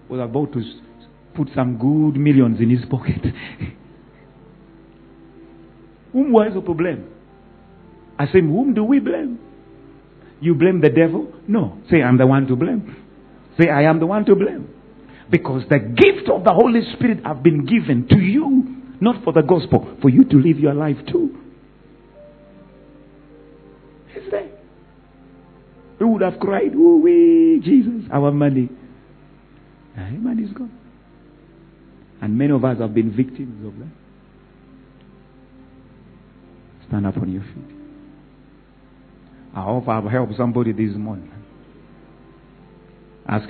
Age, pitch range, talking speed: 50-69, 105-170 Hz, 130 wpm